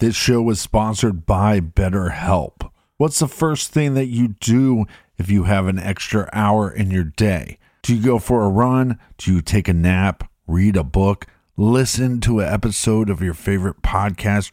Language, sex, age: English, male, 40-59